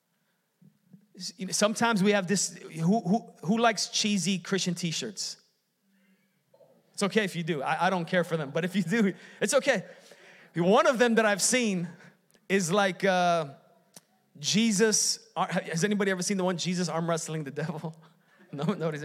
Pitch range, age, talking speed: 185-225 Hz, 30-49, 160 wpm